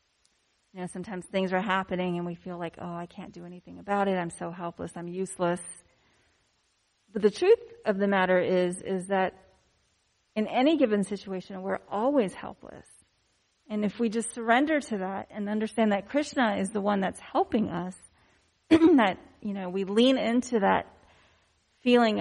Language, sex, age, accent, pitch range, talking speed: English, female, 30-49, American, 180-220 Hz, 170 wpm